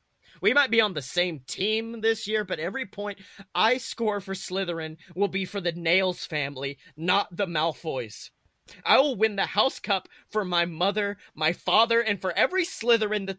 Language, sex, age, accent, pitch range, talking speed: English, male, 30-49, American, 160-215 Hz, 185 wpm